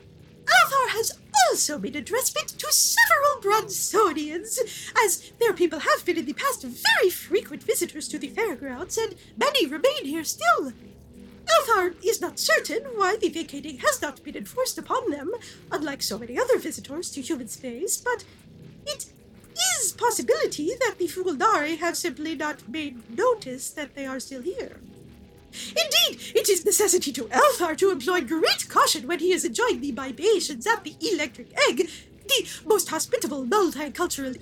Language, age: English, 40-59